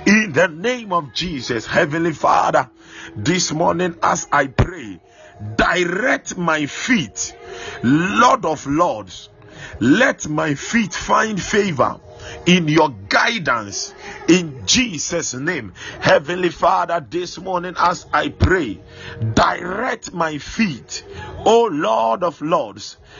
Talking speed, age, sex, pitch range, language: 110 wpm, 50-69, male, 145-185 Hz, English